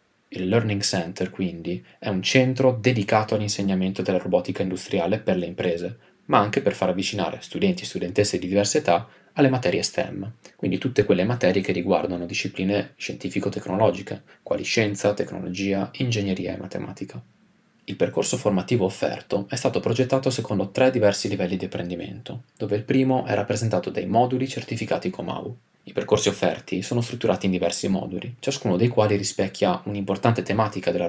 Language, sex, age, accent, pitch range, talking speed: Italian, male, 20-39, native, 95-120 Hz, 155 wpm